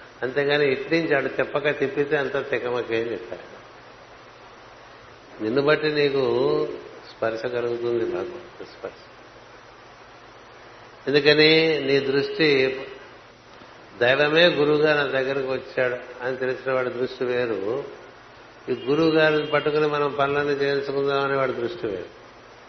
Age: 60-79